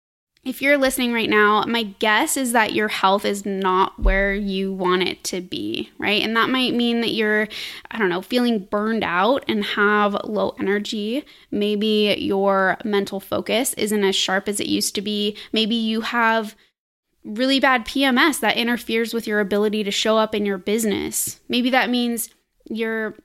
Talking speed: 180 wpm